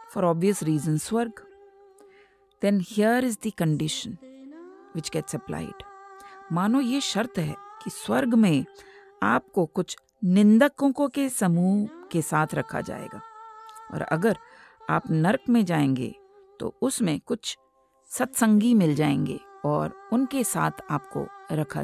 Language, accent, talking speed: English, Indian, 125 wpm